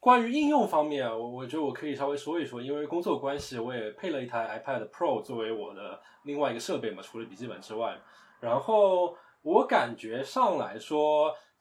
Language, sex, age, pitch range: Chinese, male, 20-39, 125-195 Hz